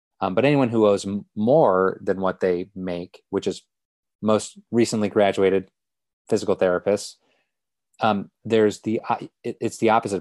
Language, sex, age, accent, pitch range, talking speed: English, male, 30-49, American, 95-115 Hz, 155 wpm